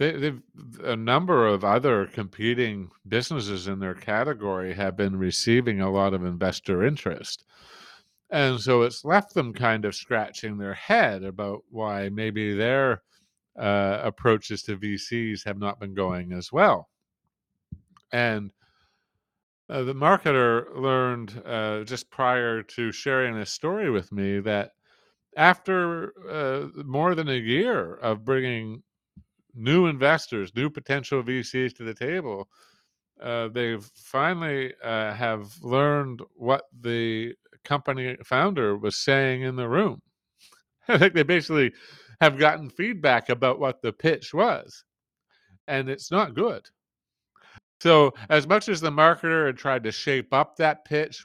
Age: 50-69